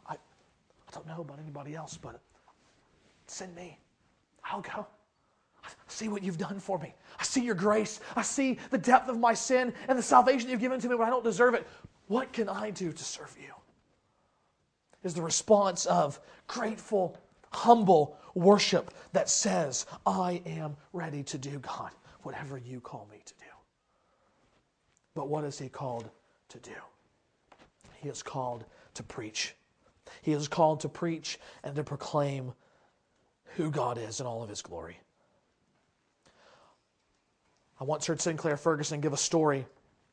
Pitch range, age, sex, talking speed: 150-195 Hz, 40-59, male, 155 wpm